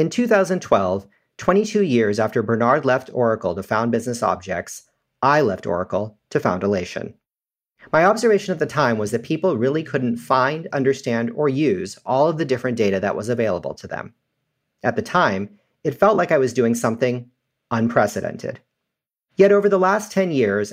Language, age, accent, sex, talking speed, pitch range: English, 40-59, American, male, 170 wpm, 110-160 Hz